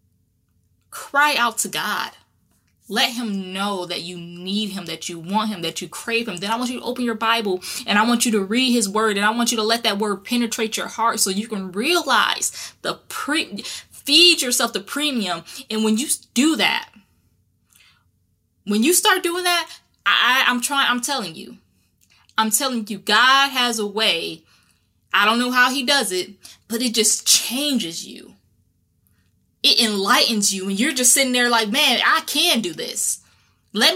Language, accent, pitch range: English, American, 180-255 Hz